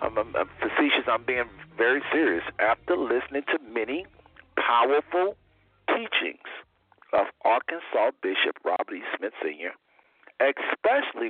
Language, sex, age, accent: English, male, 50-69, American